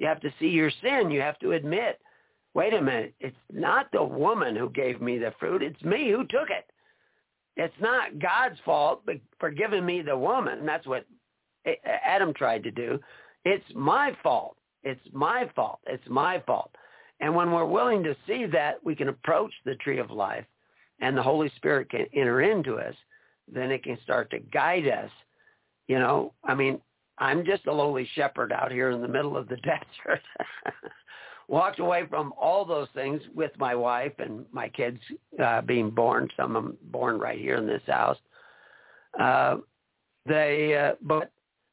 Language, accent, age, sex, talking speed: English, American, 50-69, male, 180 wpm